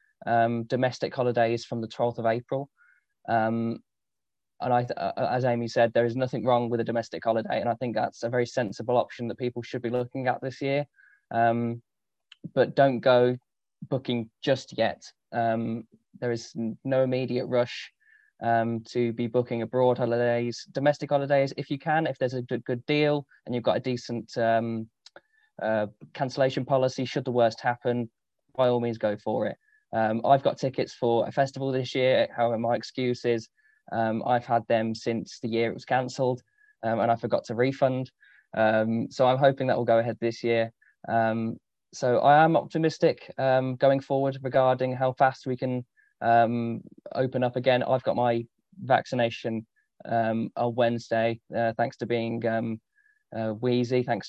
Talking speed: 175 wpm